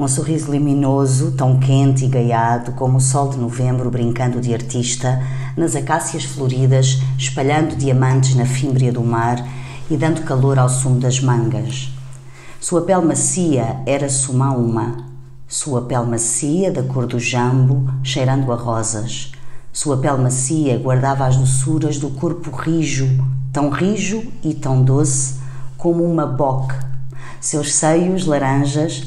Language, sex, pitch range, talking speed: Portuguese, female, 125-150 Hz, 140 wpm